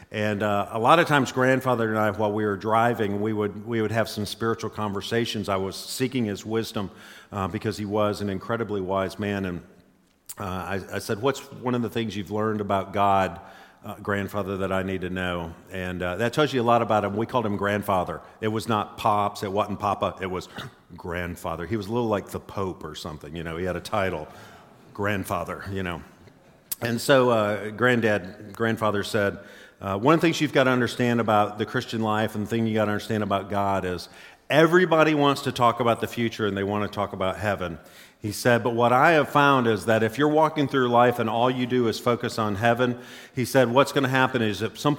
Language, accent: English, American